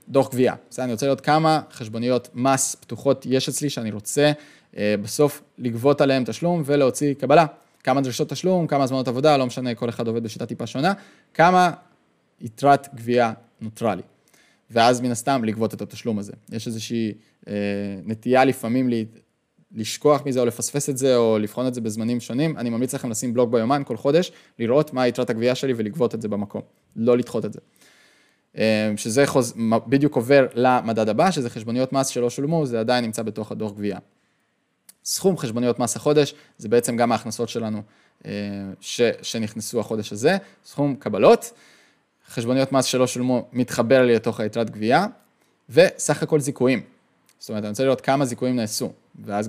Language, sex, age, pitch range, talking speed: Hebrew, male, 20-39, 115-135 Hz, 155 wpm